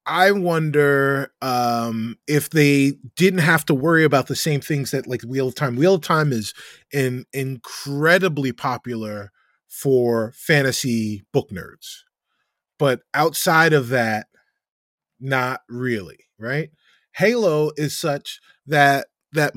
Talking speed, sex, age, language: 125 wpm, male, 20-39, English